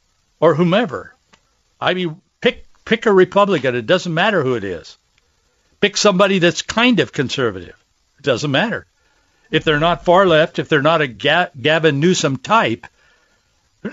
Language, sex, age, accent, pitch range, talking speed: English, male, 60-79, American, 130-180 Hz, 155 wpm